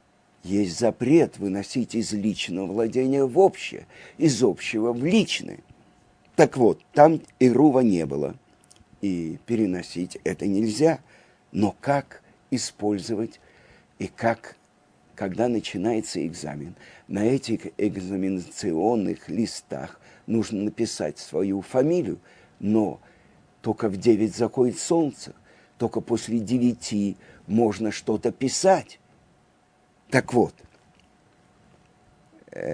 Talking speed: 95 wpm